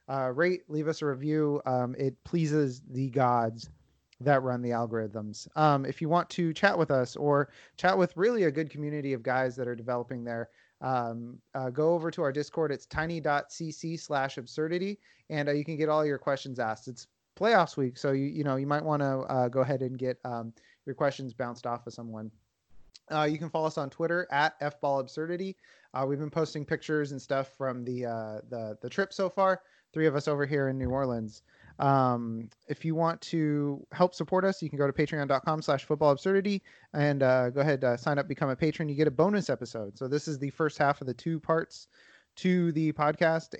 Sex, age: male, 30-49